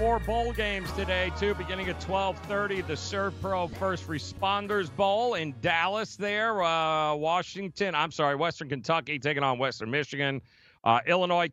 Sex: male